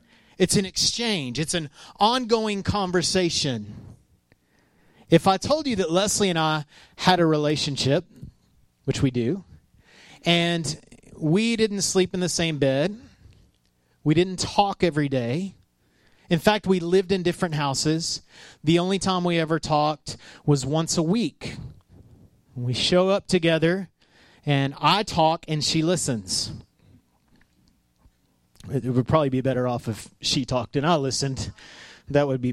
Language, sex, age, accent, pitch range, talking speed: English, male, 30-49, American, 135-185 Hz, 140 wpm